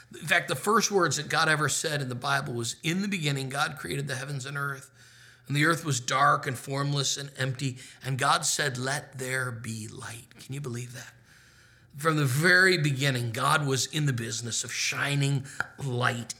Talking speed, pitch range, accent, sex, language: 200 wpm, 120-145 Hz, American, male, English